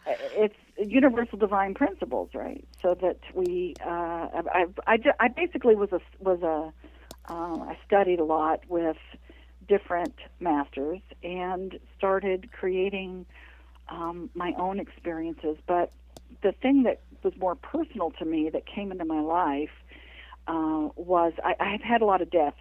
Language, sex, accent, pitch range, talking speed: English, female, American, 155-200 Hz, 145 wpm